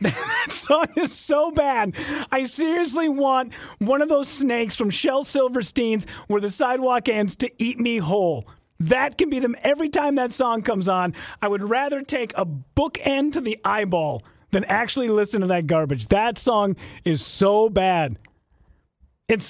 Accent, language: American, English